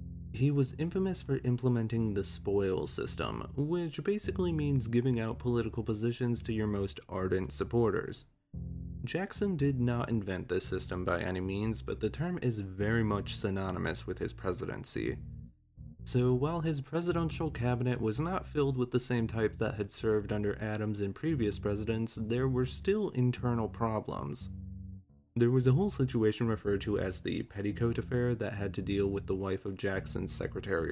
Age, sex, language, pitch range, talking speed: 20-39, male, English, 95-125 Hz, 165 wpm